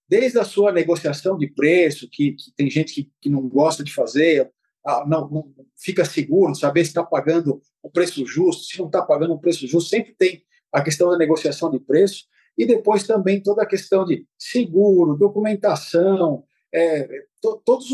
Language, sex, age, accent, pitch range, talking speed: Portuguese, male, 50-69, Brazilian, 155-195 Hz, 190 wpm